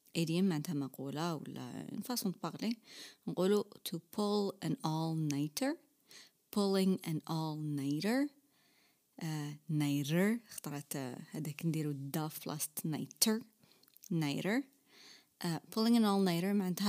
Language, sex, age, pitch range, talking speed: Arabic, female, 30-49, 160-210 Hz, 100 wpm